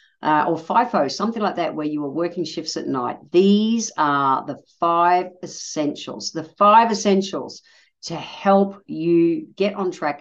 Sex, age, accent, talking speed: female, 50-69, Australian, 160 wpm